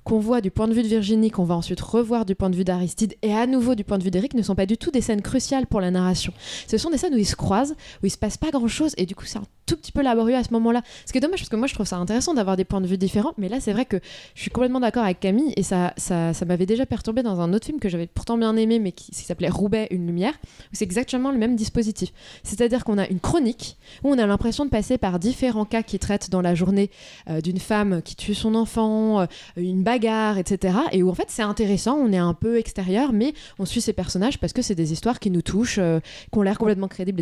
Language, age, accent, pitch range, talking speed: French, 20-39, French, 190-240 Hz, 290 wpm